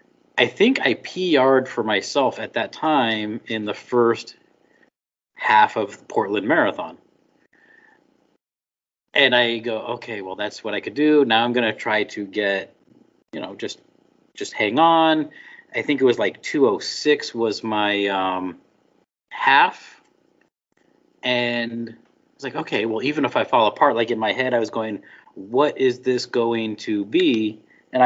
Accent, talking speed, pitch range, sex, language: American, 160 wpm, 110-150 Hz, male, English